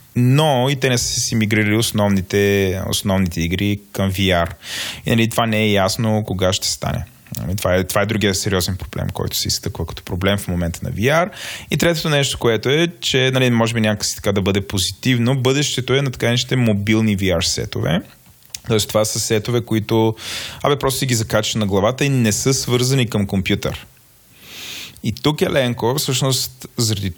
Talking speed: 180 wpm